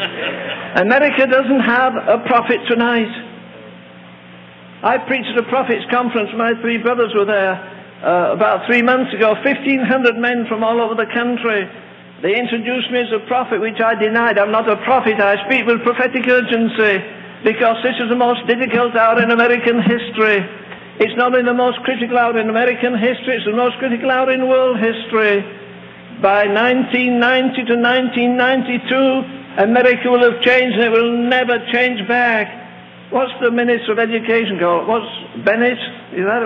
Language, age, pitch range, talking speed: English, 60-79, 220-255 Hz, 165 wpm